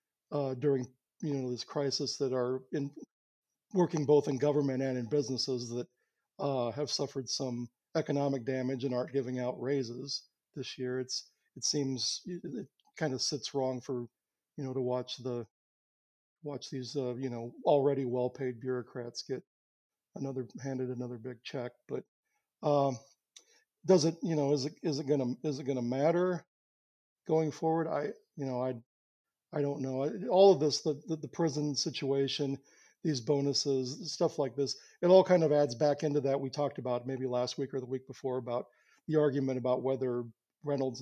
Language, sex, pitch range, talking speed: English, male, 125-150 Hz, 175 wpm